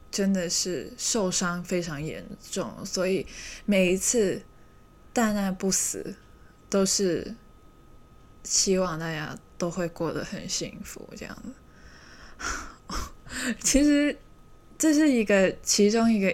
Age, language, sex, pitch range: 20-39, Chinese, female, 175-210 Hz